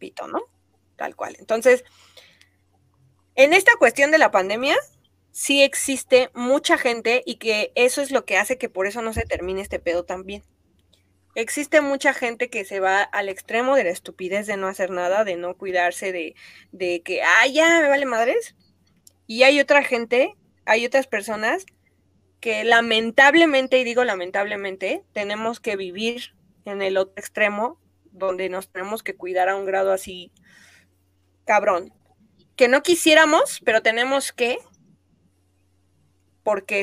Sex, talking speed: female, 155 wpm